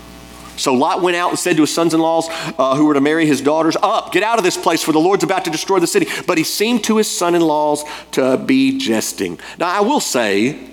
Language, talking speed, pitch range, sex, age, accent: English, 235 wpm, 95-150 Hz, male, 40-59, American